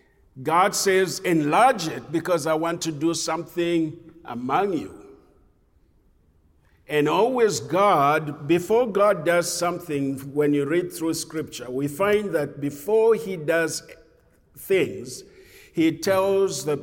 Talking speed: 120 wpm